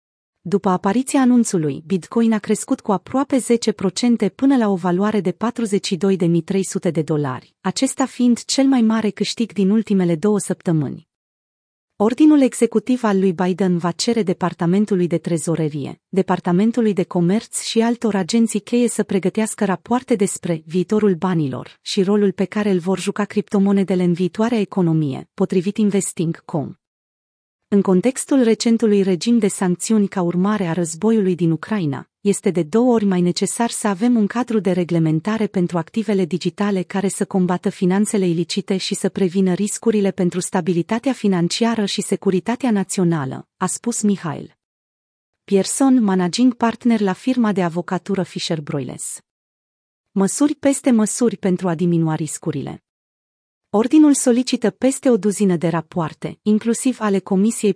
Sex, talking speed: female, 140 wpm